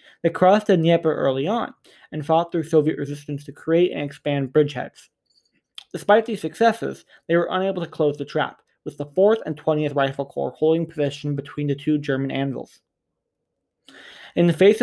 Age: 20-39